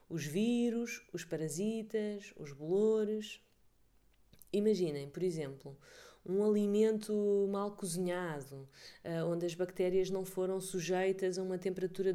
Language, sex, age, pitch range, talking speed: Portuguese, female, 20-39, 170-210 Hz, 110 wpm